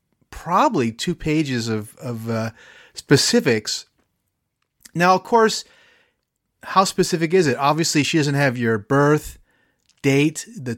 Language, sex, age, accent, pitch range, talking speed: English, male, 30-49, American, 120-160 Hz, 120 wpm